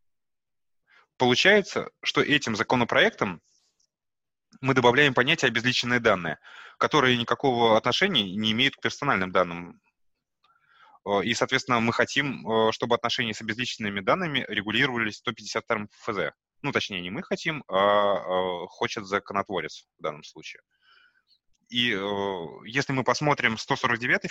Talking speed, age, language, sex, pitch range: 115 wpm, 20-39, Russian, male, 105-130 Hz